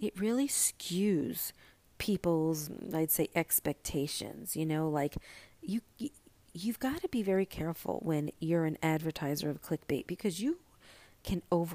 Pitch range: 150-200 Hz